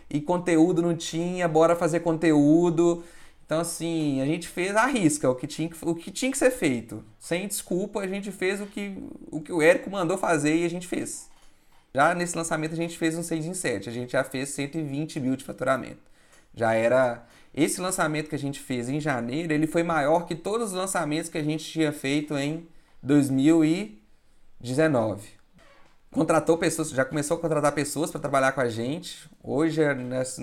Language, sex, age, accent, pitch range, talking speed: Portuguese, male, 20-39, Brazilian, 130-165 Hz, 185 wpm